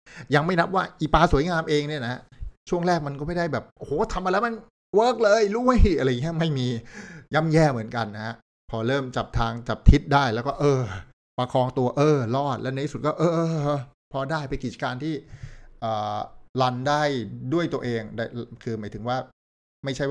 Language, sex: Thai, male